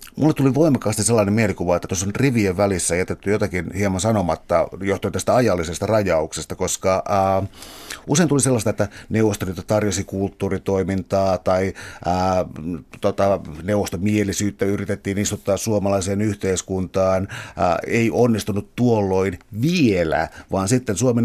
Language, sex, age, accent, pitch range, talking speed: Finnish, male, 60-79, native, 95-115 Hz, 120 wpm